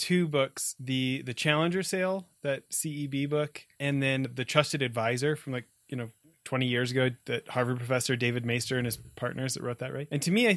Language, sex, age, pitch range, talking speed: English, male, 20-39, 130-170 Hz, 210 wpm